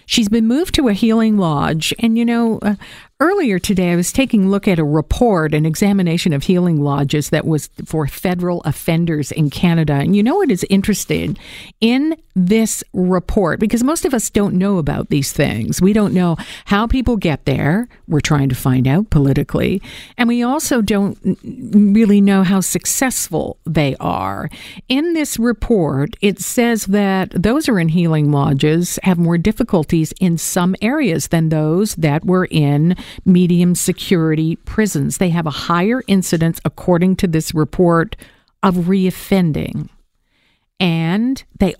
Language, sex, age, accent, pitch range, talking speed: English, female, 50-69, American, 160-210 Hz, 160 wpm